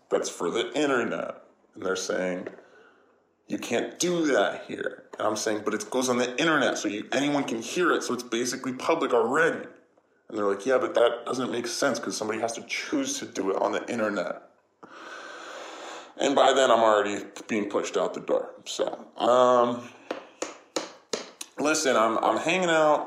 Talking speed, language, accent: 180 wpm, English, American